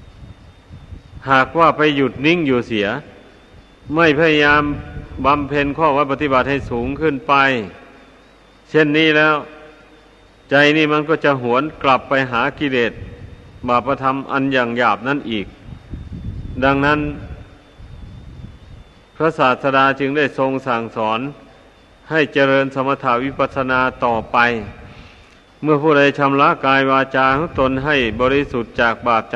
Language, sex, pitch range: Thai, male, 120-145 Hz